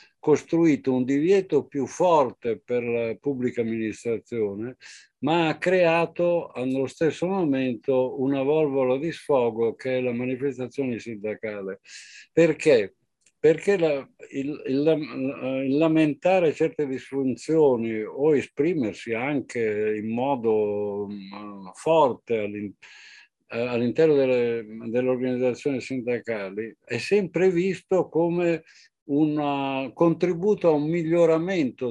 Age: 60-79